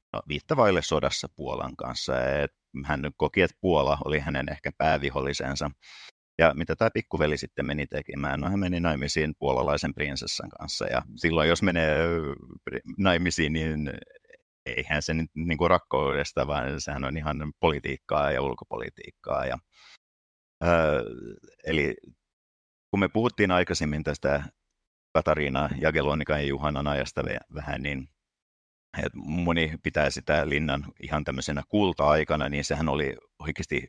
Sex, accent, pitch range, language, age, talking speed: male, native, 70-85 Hz, Finnish, 50-69, 120 wpm